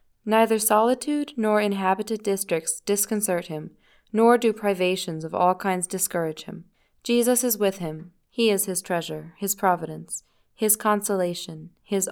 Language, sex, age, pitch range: English, female, 20-39, 180-225 Hz